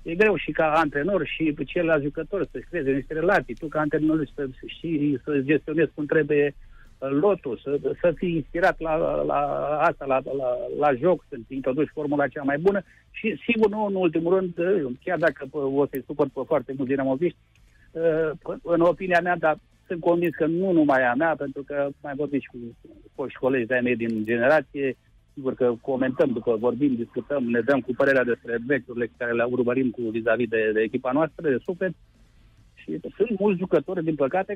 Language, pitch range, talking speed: Romanian, 125-175 Hz, 185 wpm